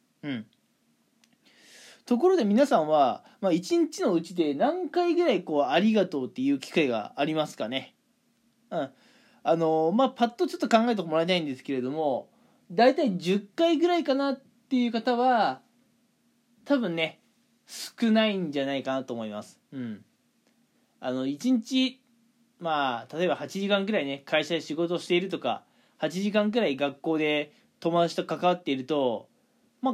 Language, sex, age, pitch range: Japanese, male, 20-39, 165-250 Hz